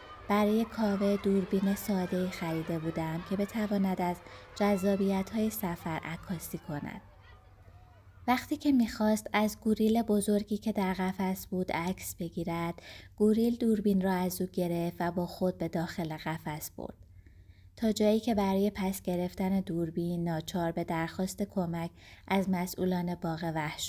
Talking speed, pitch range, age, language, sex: 135 wpm, 165-205 Hz, 20-39, Persian, female